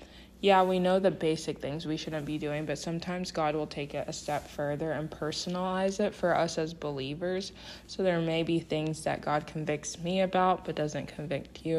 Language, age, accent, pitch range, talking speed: English, 20-39, American, 150-175 Hz, 205 wpm